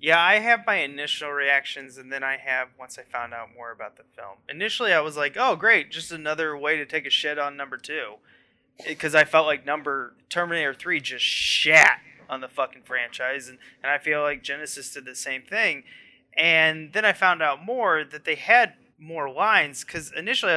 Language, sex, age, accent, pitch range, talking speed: English, male, 20-39, American, 135-175 Hz, 205 wpm